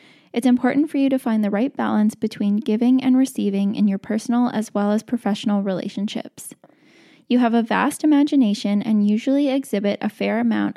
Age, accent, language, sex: 10-29, American, English, female